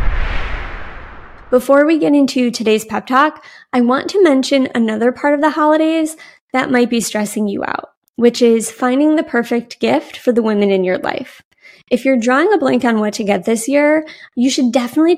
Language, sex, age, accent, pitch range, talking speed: English, female, 20-39, American, 210-260 Hz, 190 wpm